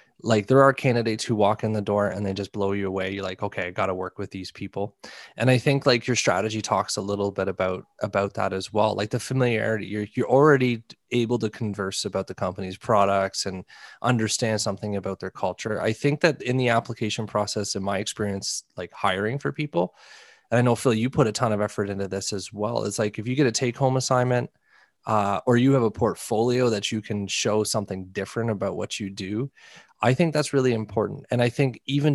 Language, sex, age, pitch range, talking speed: English, male, 20-39, 100-120 Hz, 225 wpm